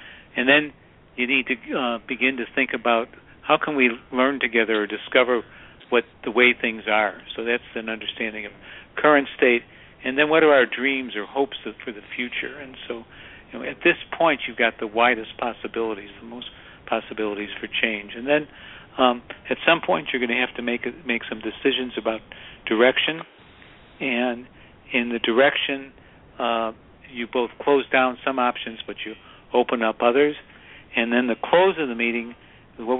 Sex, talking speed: male, 185 wpm